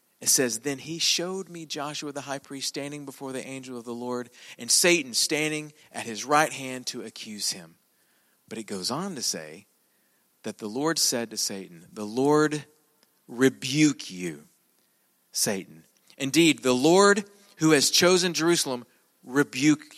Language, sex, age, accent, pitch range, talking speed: English, male, 40-59, American, 140-205 Hz, 155 wpm